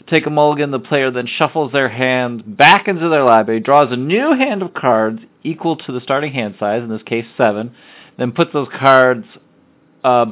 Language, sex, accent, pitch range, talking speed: English, male, American, 115-155 Hz, 200 wpm